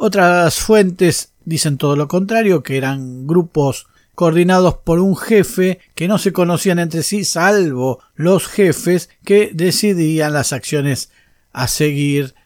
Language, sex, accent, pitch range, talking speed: Spanish, male, Argentinian, 135-180 Hz, 135 wpm